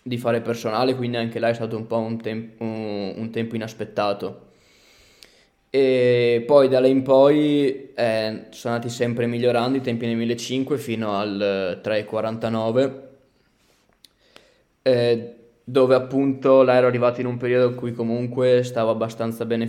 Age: 20-39